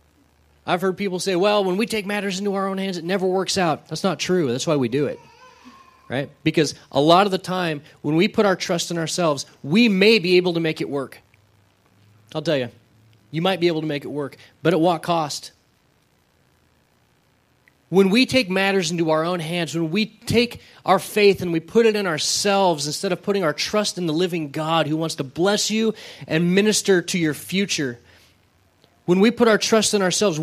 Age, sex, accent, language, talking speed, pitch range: 30-49, male, American, English, 210 wpm, 145-195 Hz